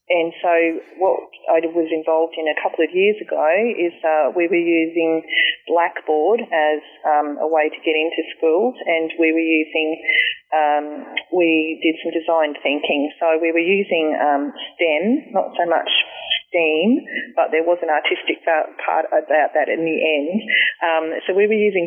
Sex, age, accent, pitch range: female, 30-49, Australian, 155-180 Hz